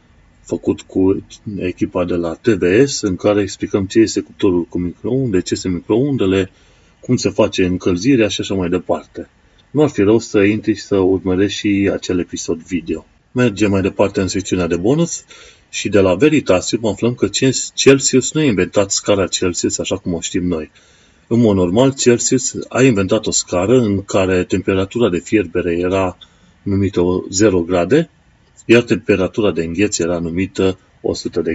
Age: 30-49